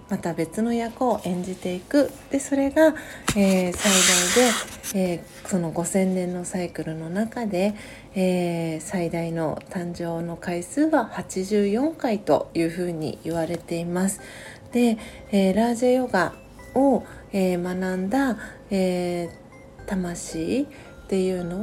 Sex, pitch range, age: female, 170-225 Hz, 40-59